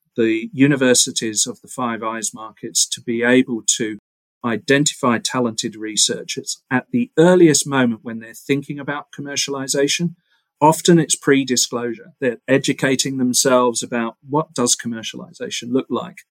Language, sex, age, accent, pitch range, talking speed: English, male, 40-59, British, 115-140 Hz, 130 wpm